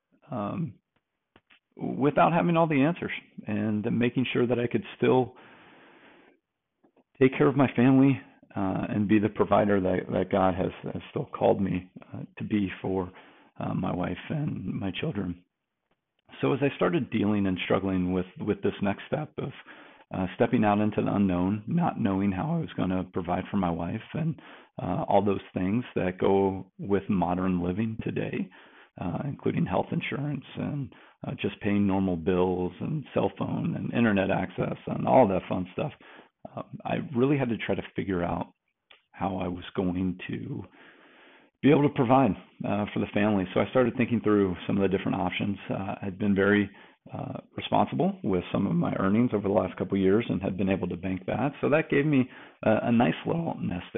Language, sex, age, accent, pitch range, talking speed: English, male, 40-59, American, 95-120 Hz, 185 wpm